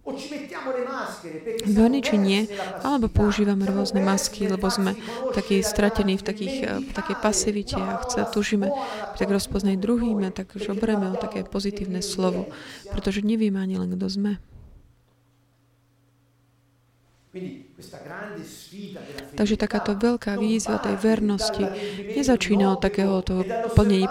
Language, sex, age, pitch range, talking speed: Slovak, male, 50-69, 185-215 Hz, 105 wpm